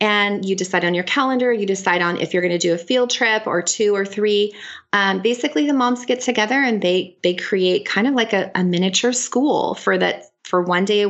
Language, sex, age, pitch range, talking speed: English, female, 30-49, 175-215 Hz, 240 wpm